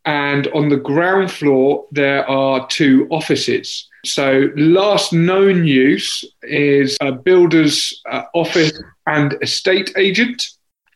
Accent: British